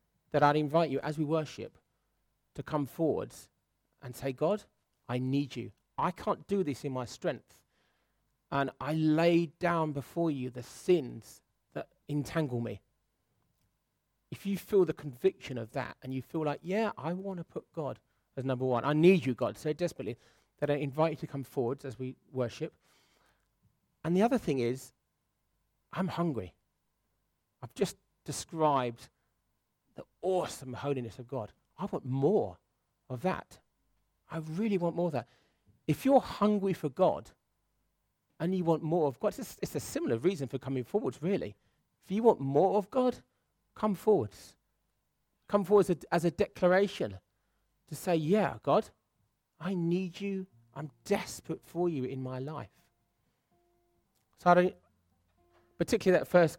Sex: male